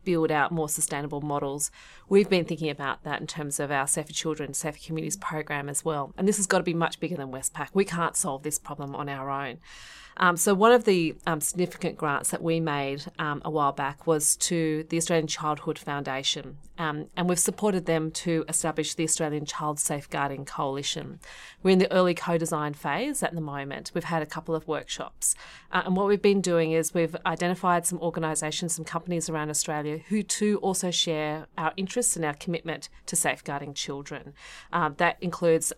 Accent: Australian